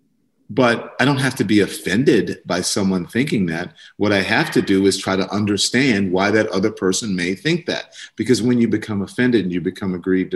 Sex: male